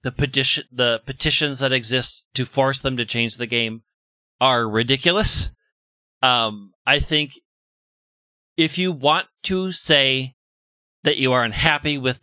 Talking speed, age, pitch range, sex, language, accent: 130 wpm, 40-59, 120-150 Hz, male, English, American